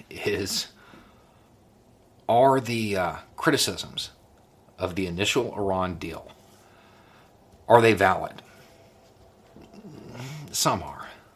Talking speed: 80 wpm